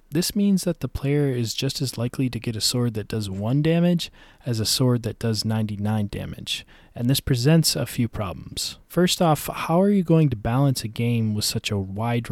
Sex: male